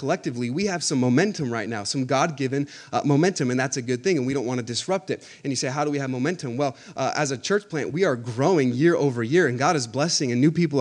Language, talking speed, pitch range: English, 280 wpm, 130-165 Hz